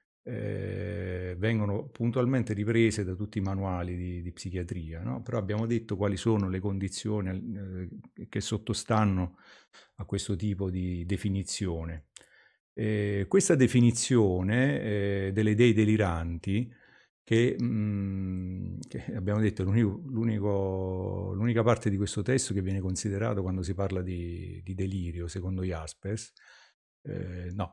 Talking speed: 130 wpm